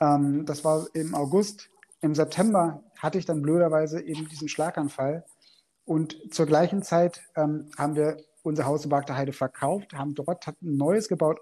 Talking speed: 165 wpm